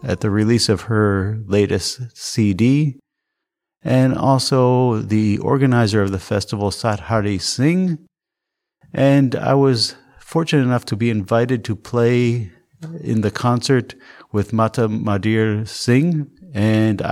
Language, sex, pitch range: English, male, 100-125 Hz